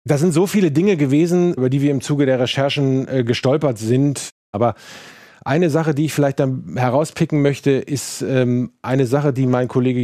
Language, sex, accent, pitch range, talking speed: German, male, German, 110-135 Hz, 190 wpm